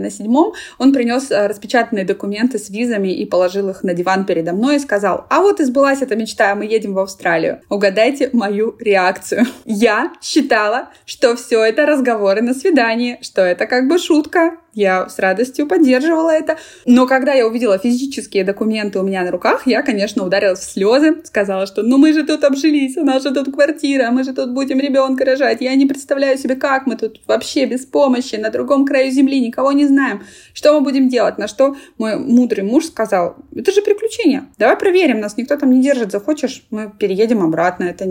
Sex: female